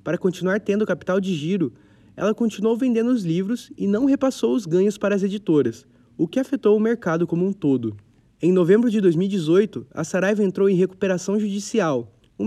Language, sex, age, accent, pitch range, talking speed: Portuguese, male, 20-39, Brazilian, 155-205 Hz, 185 wpm